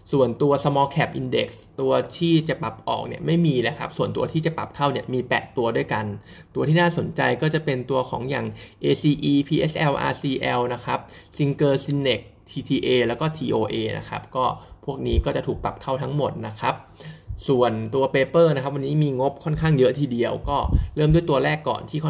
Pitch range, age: 120-155 Hz, 20-39